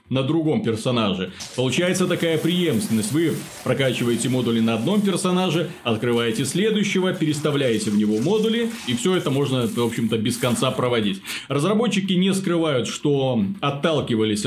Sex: male